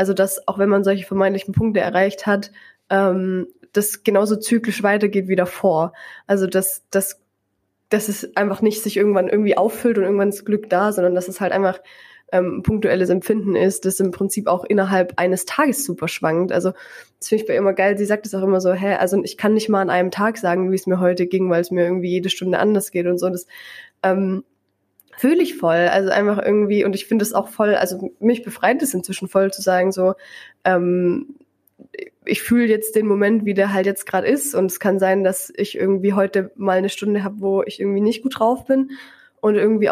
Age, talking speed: 20-39, 220 wpm